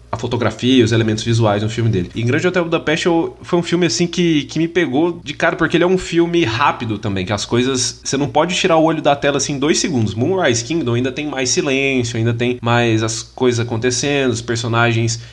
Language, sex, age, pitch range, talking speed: Portuguese, male, 20-39, 115-150 Hz, 230 wpm